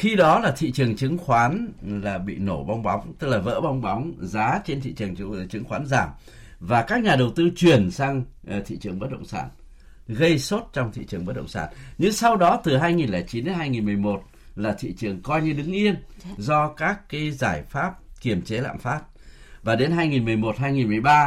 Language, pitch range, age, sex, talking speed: Vietnamese, 100-150 Hz, 60-79, male, 200 wpm